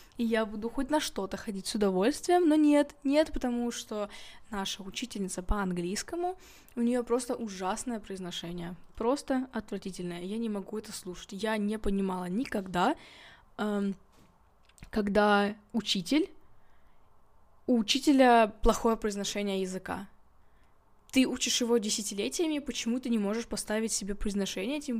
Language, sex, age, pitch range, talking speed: Russian, female, 20-39, 195-235 Hz, 125 wpm